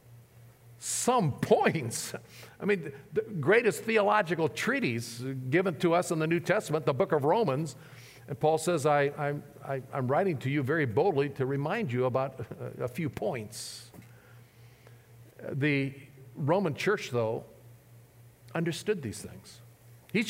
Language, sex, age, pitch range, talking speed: English, male, 50-69, 120-185 Hz, 130 wpm